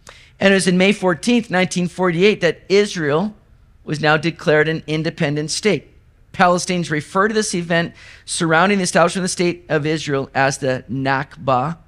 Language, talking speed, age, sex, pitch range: English, 155 wpm, 40-59, male, 135-195 Hz